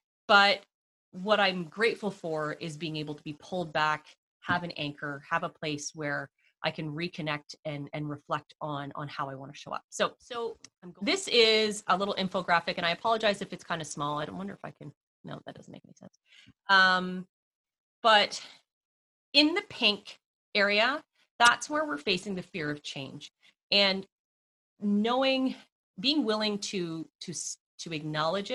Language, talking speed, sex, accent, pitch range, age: English, 175 wpm, female, American, 155-195 Hz, 30-49